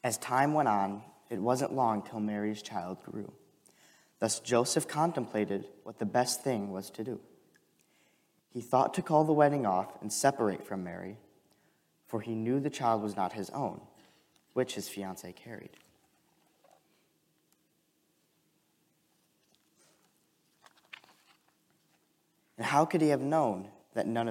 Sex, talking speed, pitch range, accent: male, 130 wpm, 100-130 Hz, American